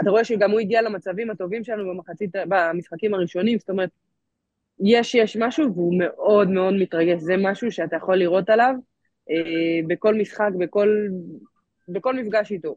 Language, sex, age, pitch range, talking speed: Hebrew, female, 20-39, 175-220 Hz, 155 wpm